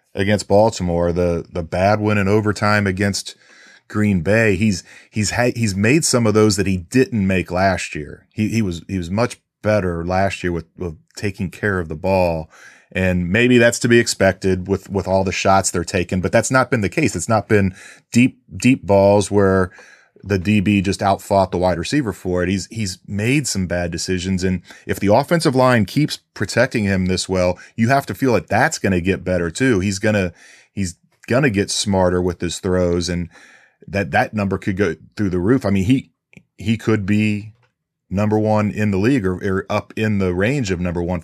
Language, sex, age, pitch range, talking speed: English, male, 30-49, 90-110 Hz, 210 wpm